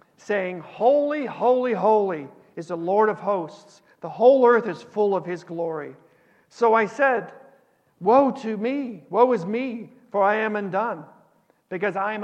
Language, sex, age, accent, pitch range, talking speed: English, male, 50-69, American, 170-215 Hz, 160 wpm